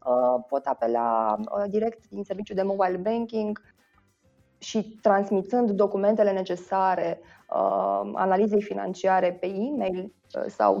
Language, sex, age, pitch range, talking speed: Romanian, female, 20-39, 180-215 Hz, 95 wpm